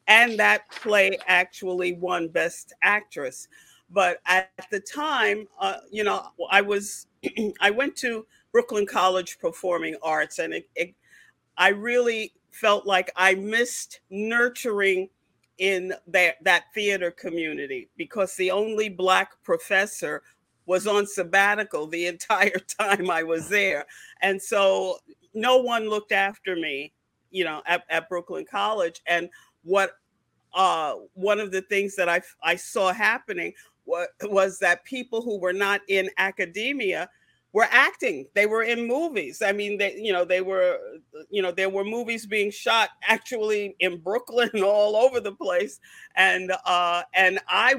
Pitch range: 185-225 Hz